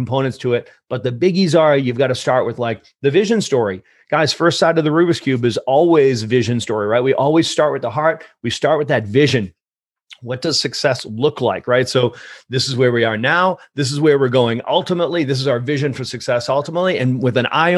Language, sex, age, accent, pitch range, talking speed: English, male, 40-59, American, 125-160 Hz, 235 wpm